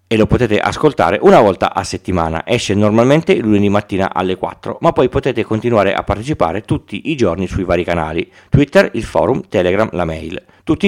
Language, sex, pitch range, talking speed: Italian, male, 100-135 Hz, 180 wpm